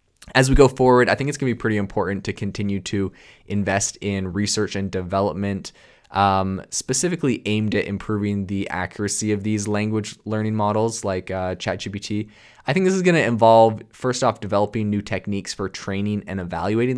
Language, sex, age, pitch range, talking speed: English, male, 20-39, 95-115 Hz, 180 wpm